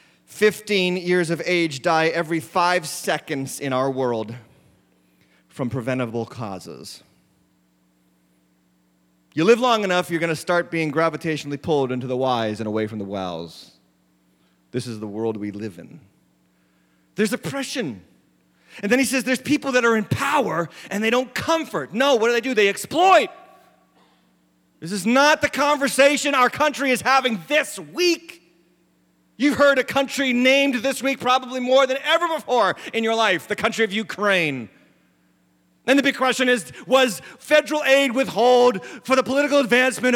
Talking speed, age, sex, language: 160 wpm, 30-49, male, English